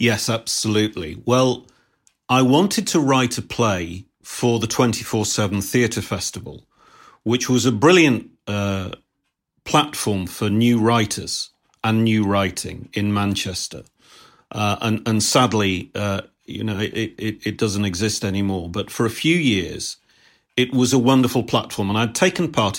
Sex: male